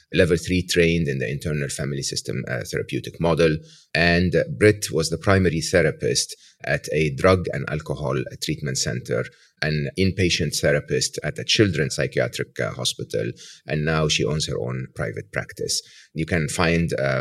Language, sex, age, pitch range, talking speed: English, male, 30-49, 80-105 Hz, 160 wpm